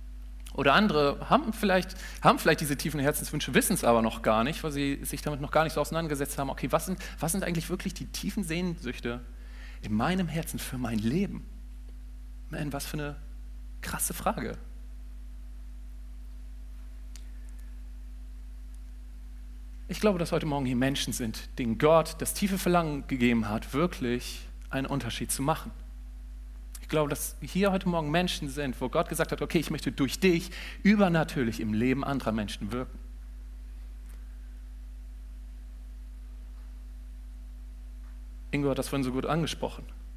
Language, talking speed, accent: German, 140 wpm, German